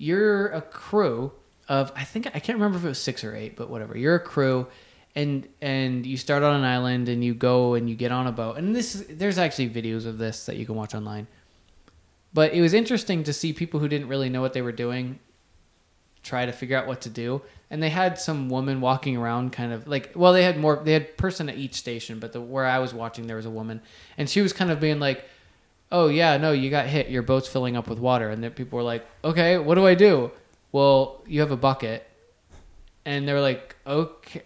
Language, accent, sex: English, American, male